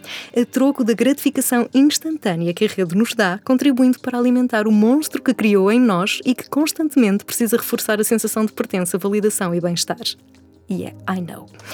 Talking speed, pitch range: 185 wpm, 185-245 Hz